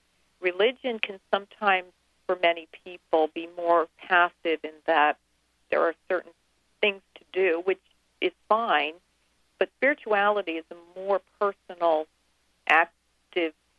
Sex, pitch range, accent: female, 150-185 Hz, American